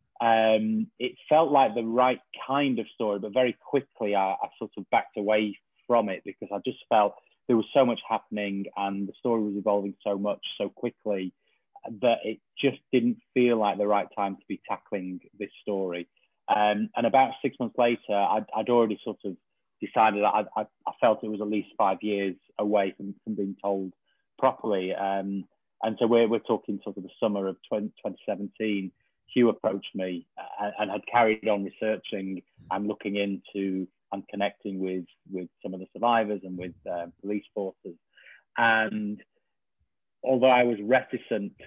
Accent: British